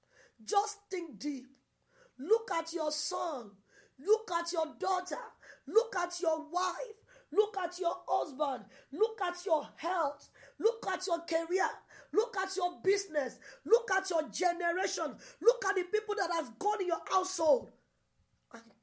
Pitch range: 240-370 Hz